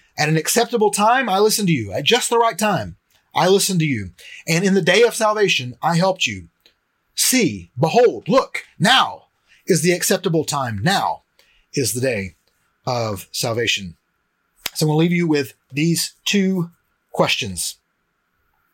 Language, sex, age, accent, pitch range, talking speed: English, male, 30-49, American, 135-195 Hz, 160 wpm